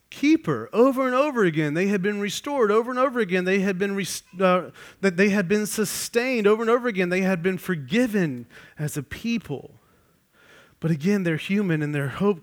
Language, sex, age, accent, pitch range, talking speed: English, male, 30-49, American, 165-205 Hz, 200 wpm